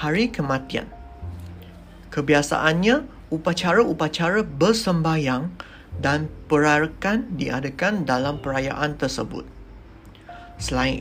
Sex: male